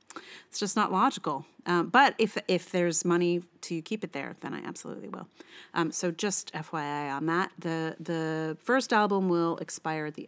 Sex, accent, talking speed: female, American, 185 wpm